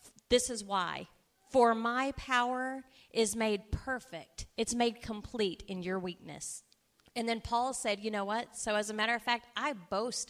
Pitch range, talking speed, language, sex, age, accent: 195-240 Hz, 175 wpm, English, female, 40-59, American